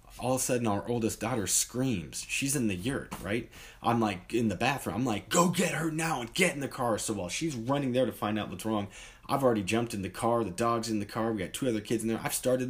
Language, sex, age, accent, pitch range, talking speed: English, male, 20-39, American, 95-120 Hz, 280 wpm